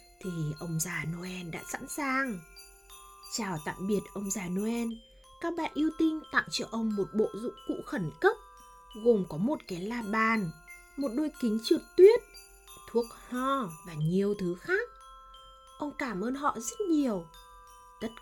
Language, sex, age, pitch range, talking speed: Vietnamese, female, 20-39, 180-265 Hz, 165 wpm